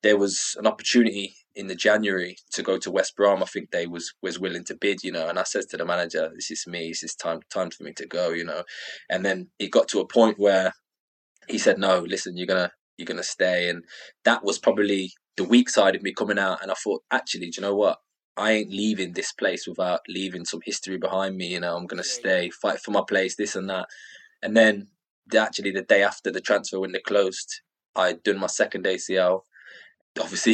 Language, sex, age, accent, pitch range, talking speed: English, male, 20-39, British, 95-115 Hz, 230 wpm